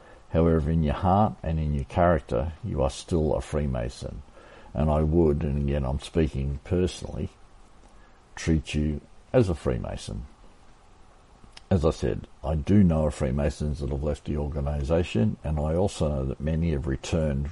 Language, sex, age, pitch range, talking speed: English, male, 60-79, 70-90 Hz, 160 wpm